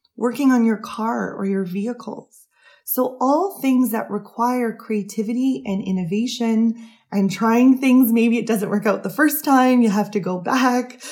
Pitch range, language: 200-245 Hz, English